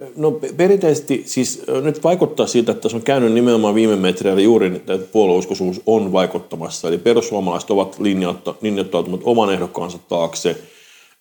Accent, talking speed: native, 150 wpm